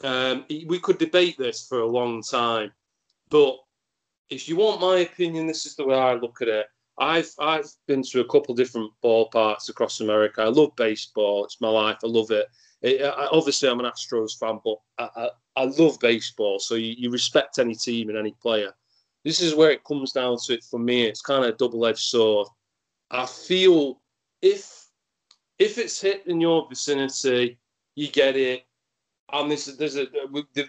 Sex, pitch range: male, 120-155 Hz